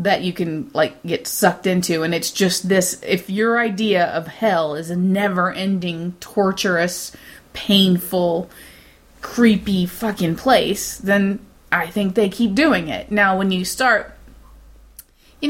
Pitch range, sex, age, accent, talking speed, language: 175-210 Hz, female, 20-39, American, 140 wpm, English